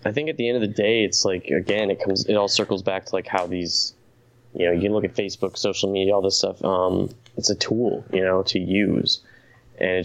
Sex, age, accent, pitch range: male, 20-39, American, 95-120 Hz